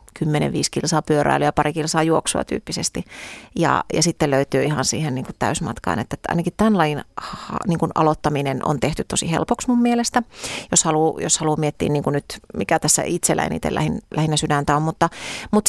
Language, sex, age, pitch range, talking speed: Finnish, female, 30-49, 150-170 Hz, 165 wpm